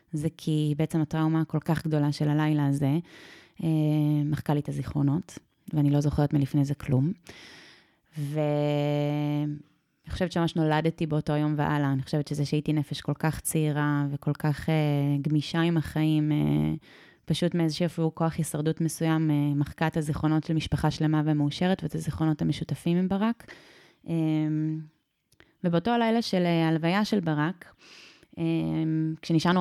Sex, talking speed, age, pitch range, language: female, 140 wpm, 20-39, 150-165 Hz, Hebrew